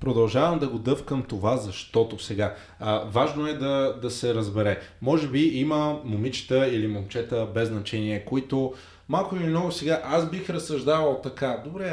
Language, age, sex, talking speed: Bulgarian, 20-39, male, 160 wpm